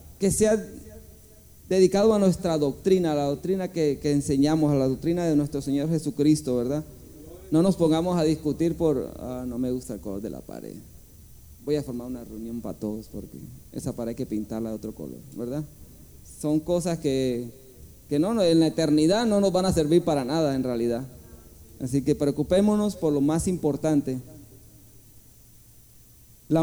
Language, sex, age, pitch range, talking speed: Spanish, male, 30-49, 125-165 Hz, 175 wpm